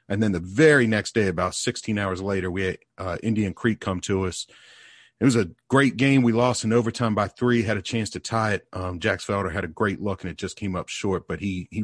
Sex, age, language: male, 40-59, English